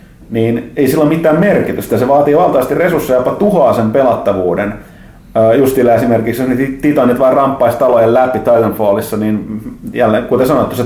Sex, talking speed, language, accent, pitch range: male, 165 wpm, Finnish, native, 110-150 Hz